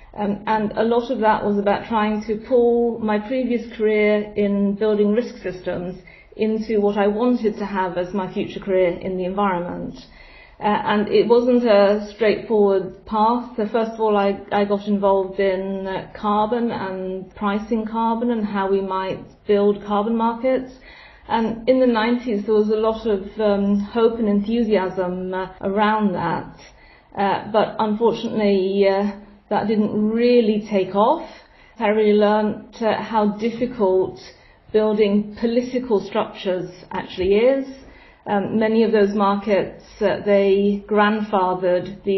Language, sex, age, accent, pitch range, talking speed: English, female, 40-59, British, 195-220 Hz, 145 wpm